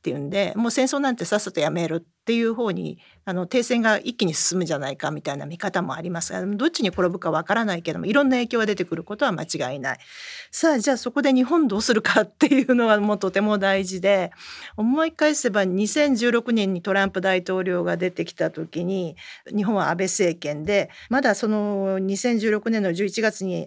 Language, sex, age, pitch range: Japanese, female, 40-59, 185-245 Hz